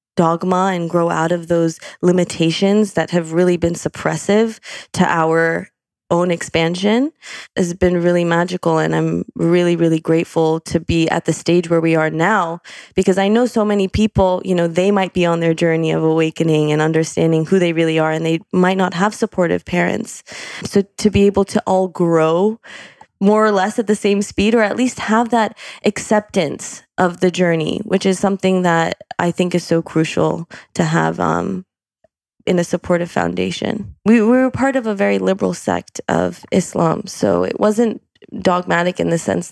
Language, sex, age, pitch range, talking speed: English, female, 20-39, 165-205 Hz, 180 wpm